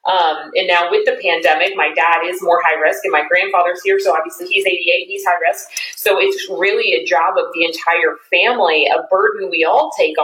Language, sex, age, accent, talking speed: English, female, 30-49, American, 215 wpm